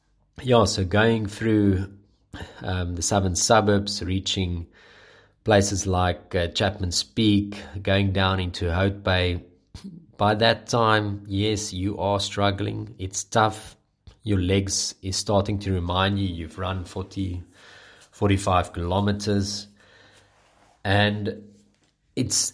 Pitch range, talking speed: 95-105 Hz, 110 wpm